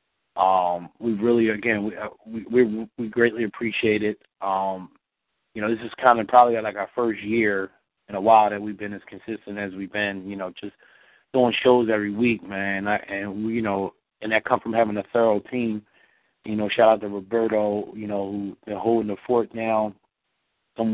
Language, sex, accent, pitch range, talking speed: English, male, American, 100-115 Hz, 200 wpm